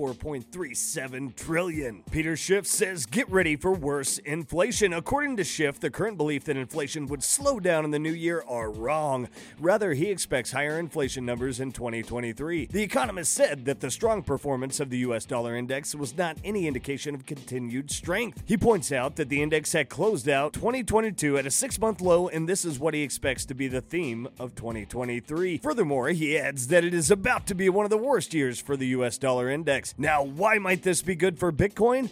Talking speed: 200 wpm